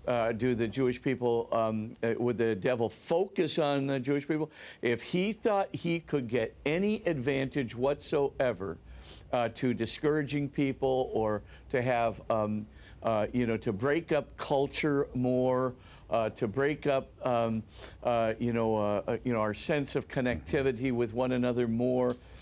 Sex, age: male, 50-69